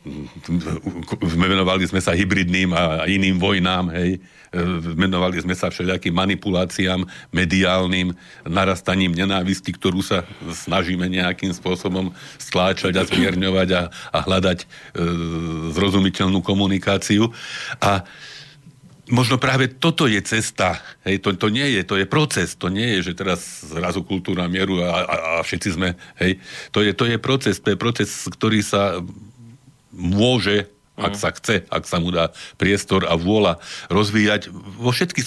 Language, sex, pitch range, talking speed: Slovak, male, 95-115 Hz, 140 wpm